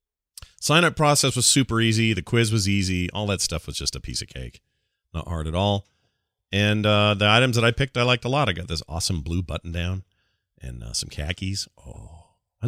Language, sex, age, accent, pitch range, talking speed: English, male, 40-59, American, 90-110 Hz, 220 wpm